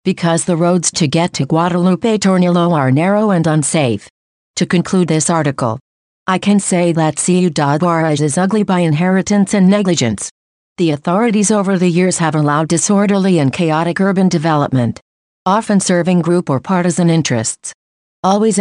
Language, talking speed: English, 150 wpm